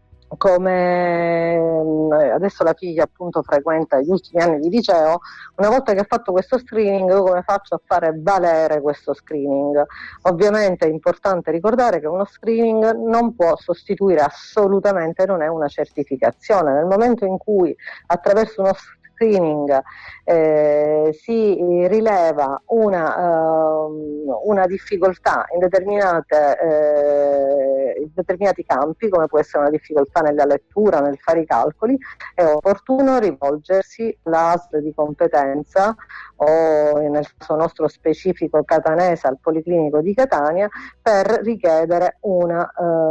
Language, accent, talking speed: Italian, native, 125 wpm